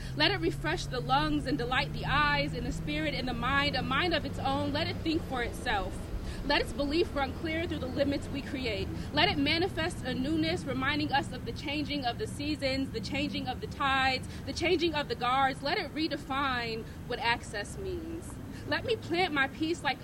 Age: 20-39